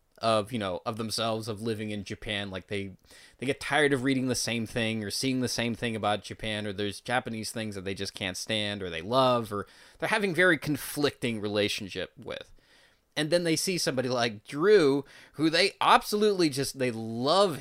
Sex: male